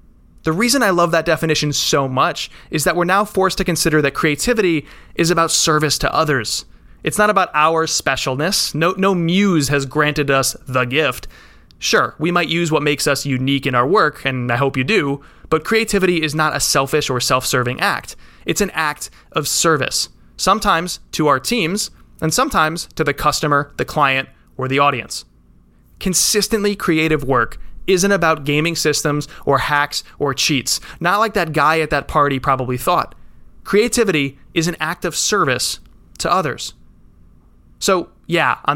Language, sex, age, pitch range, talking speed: English, male, 20-39, 140-175 Hz, 170 wpm